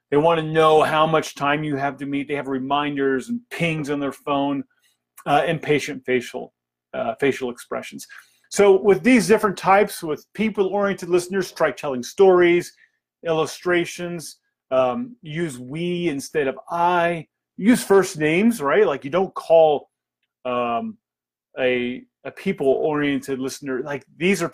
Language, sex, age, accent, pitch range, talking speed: English, male, 30-49, American, 130-180 Hz, 145 wpm